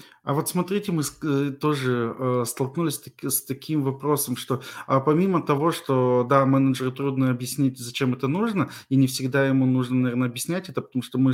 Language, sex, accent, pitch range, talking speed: Russian, male, native, 135-175 Hz, 165 wpm